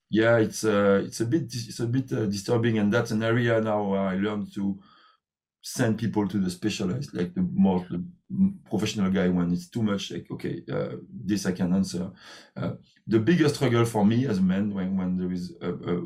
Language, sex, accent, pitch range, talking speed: English, male, French, 95-125 Hz, 215 wpm